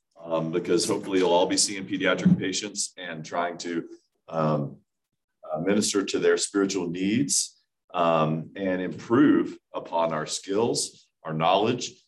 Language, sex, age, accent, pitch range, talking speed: English, male, 40-59, American, 80-100 Hz, 130 wpm